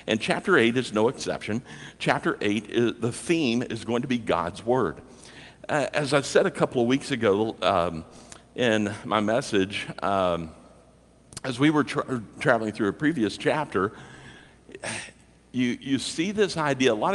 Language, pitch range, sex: English, 115-145 Hz, male